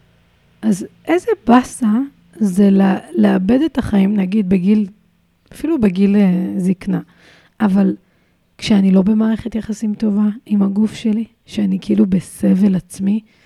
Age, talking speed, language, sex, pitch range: 30-49, 110 wpm, Hebrew, female, 185-220 Hz